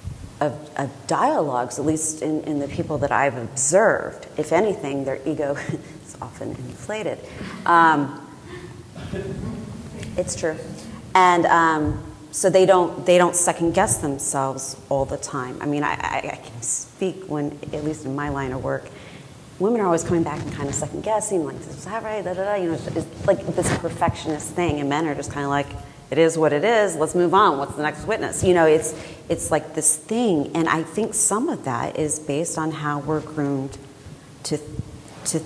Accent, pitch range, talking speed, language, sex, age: American, 145-170 Hz, 195 wpm, English, female, 30-49